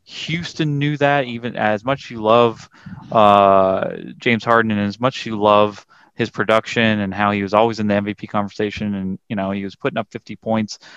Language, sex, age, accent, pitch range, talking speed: English, male, 30-49, American, 105-120 Hz, 195 wpm